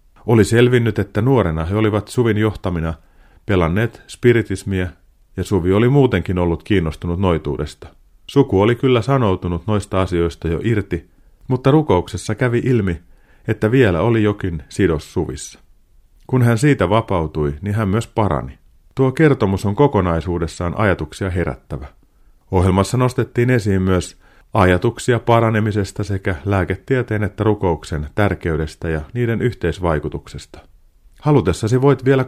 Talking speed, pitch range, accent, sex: 125 wpm, 85-115 Hz, native, male